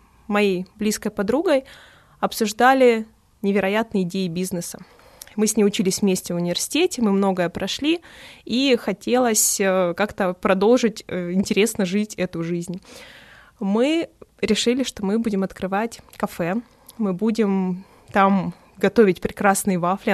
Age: 20-39